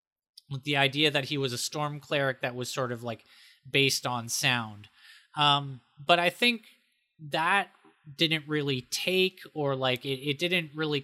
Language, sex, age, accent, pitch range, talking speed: English, male, 20-39, American, 125-150 Hz, 170 wpm